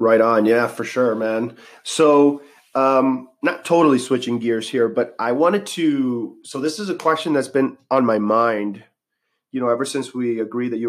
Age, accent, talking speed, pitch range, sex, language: 30-49, American, 195 wpm, 110-135 Hz, male, English